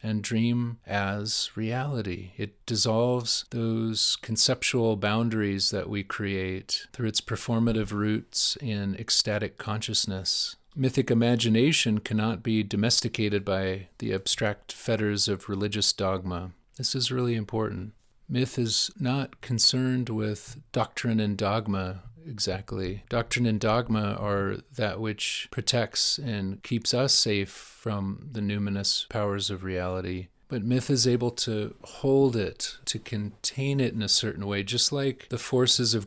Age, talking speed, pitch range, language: 40-59, 135 wpm, 100-120 Hz, English